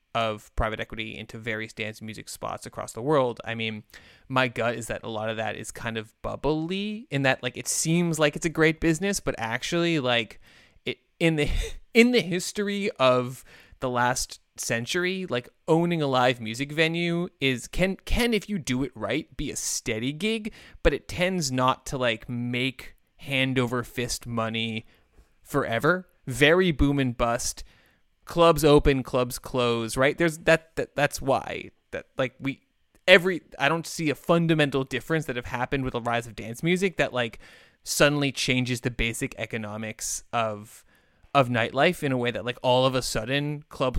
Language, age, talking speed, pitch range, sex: English, 20-39, 180 wpm, 115-160 Hz, male